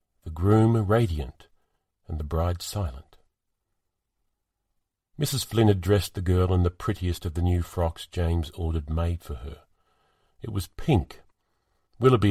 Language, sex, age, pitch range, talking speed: English, male, 50-69, 85-105 Hz, 140 wpm